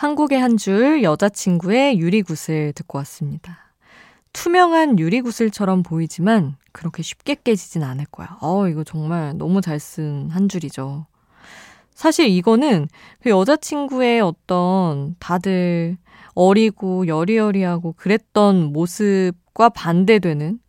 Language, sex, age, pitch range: Korean, female, 20-39, 155-225 Hz